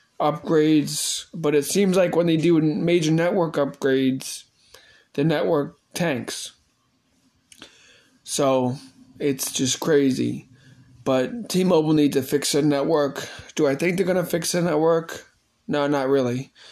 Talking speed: 135 wpm